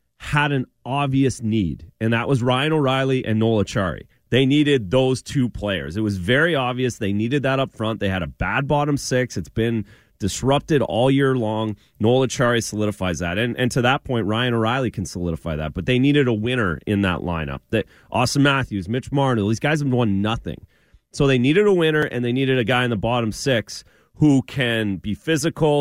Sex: male